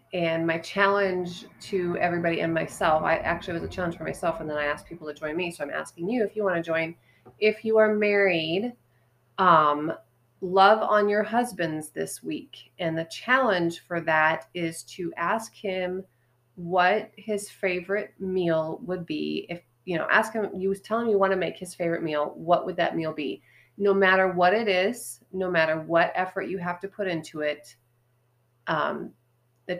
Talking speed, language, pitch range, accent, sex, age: 190 wpm, English, 155-200 Hz, American, female, 30-49